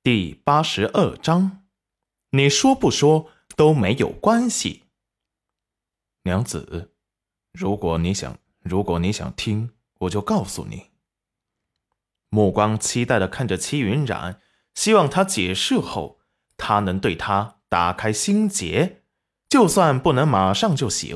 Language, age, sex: Chinese, 20-39, male